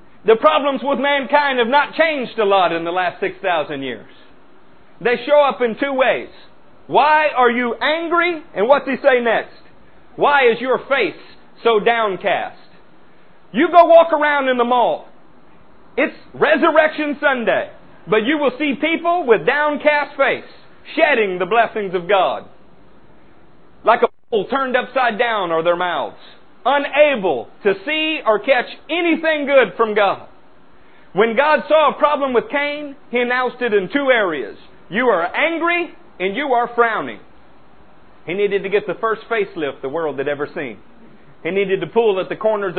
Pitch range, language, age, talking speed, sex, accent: 195-295 Hz, English, 40-59, 165 wpm, male, American